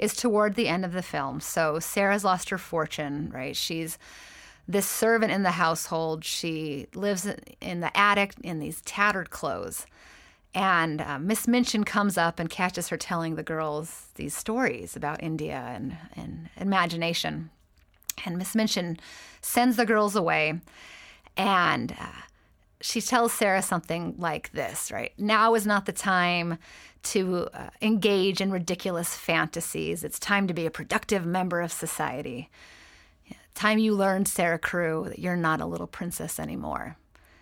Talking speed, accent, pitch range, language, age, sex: 150 wpm, American, 165-210 Hz, English, 30-49, female